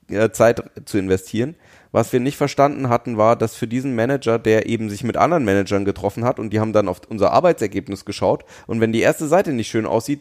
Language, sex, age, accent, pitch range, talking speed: German, male, 30-49, German, 100-120 Hz, 215 wpm